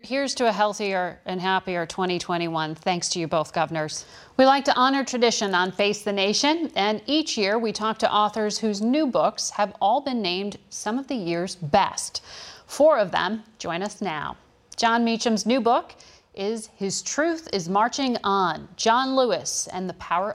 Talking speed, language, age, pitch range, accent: 180 wpm, English, 40-59, 185-240 Hz, American